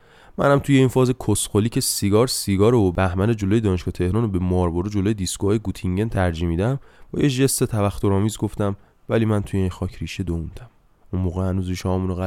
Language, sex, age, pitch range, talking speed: Persian, male, 20-39, 95-115 Hz, 190 wpm